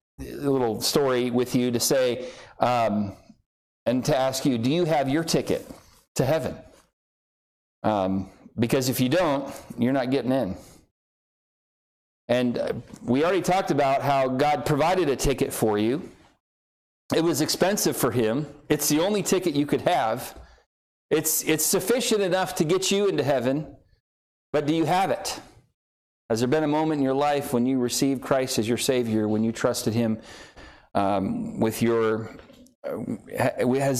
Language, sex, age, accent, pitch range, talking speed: English, male, 40-59, American, 115-150 Hz, 160 wpm